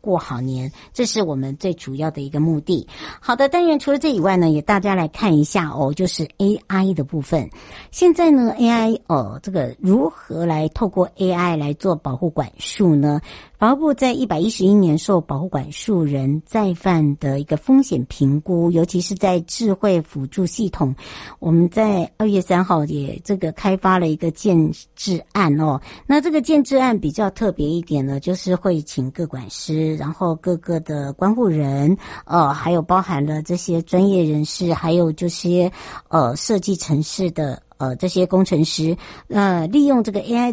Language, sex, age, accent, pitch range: Chinese, male, 60-79, American, 150-195 Hz